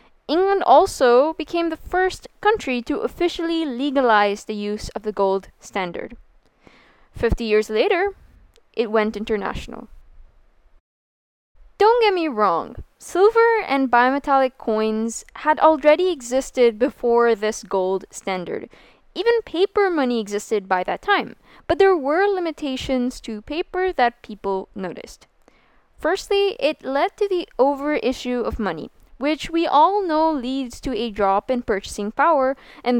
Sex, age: female, 10-29